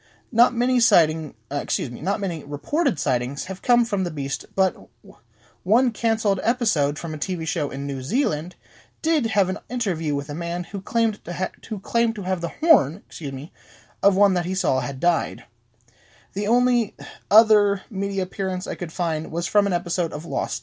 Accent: American